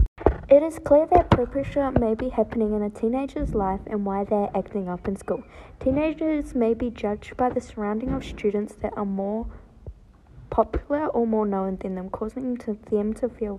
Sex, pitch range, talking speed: female, 210-255 Hz, 185 wpm